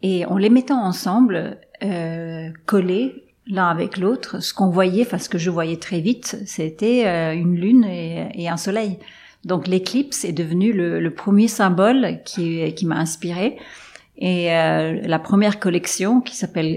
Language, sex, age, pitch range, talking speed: French, female, 40-59, 175-215 Hz, 170 wpm